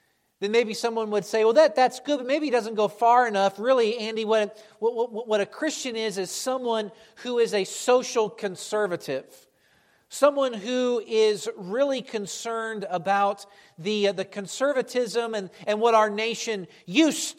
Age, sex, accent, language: 50-69, male, American, English